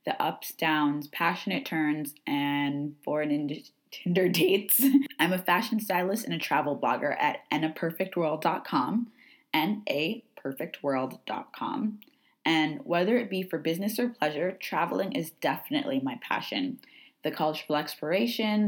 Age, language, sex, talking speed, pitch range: 20-39, English, female, 120 wpm, 150-250 Hz